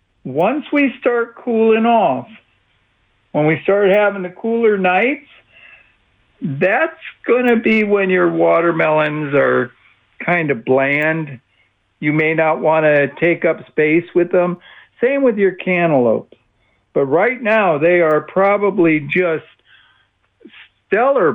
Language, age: English, 60-79